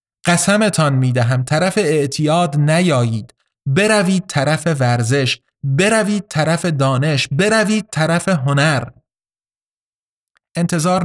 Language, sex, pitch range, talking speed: Persian, male, 125-165 Hz, 80 wpm